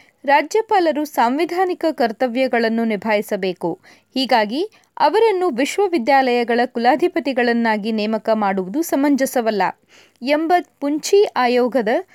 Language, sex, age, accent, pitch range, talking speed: Kannada, female, 20-39, native, 230-335 Hz, 70 wpm